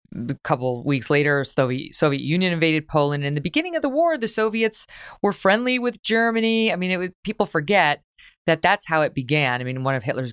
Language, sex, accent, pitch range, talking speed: English, female, American, 130-185 Hz, 220 wpm